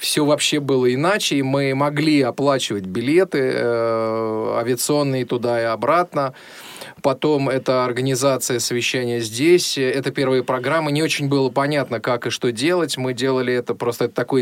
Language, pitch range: Russian, 125-145 Hz